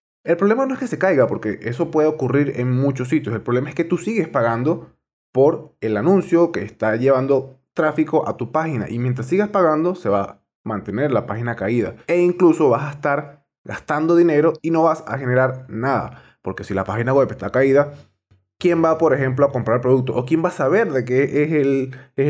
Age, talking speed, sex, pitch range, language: 20-39, 210 wpm, male, 120-155 Hz, Spanish